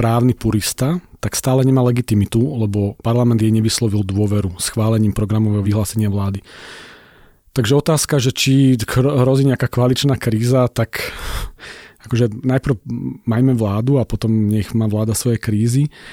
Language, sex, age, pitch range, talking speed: Slovak, male, 40-59, 110-130 Hz, 135 wpm